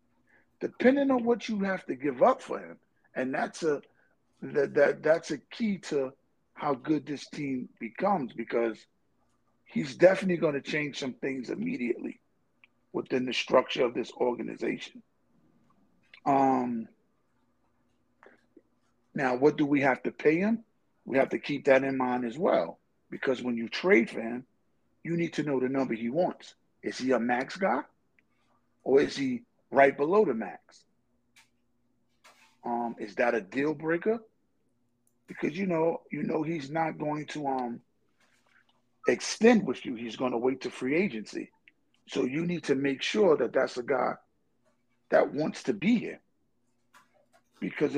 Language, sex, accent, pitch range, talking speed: English, male, American, 125-175 Hz, 155 wpm